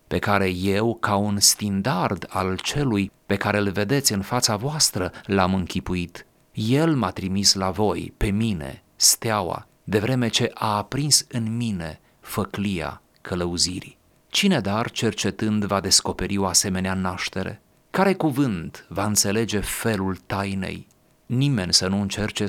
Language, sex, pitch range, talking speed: Romanian, male, 95-120 Hz, 140 wpm